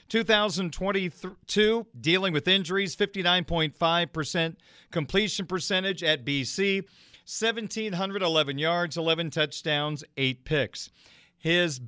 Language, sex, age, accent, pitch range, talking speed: English, male, 40-59, American, 155-195 Hz, 80 wpm